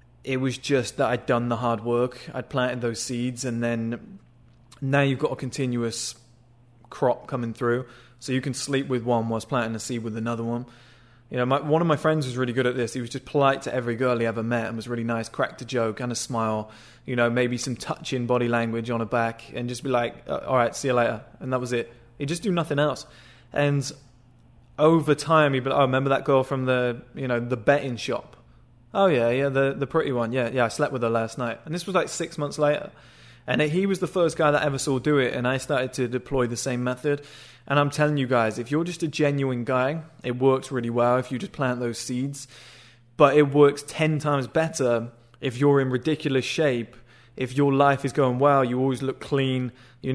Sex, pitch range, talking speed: male, 120-140 Hz, 235 wpm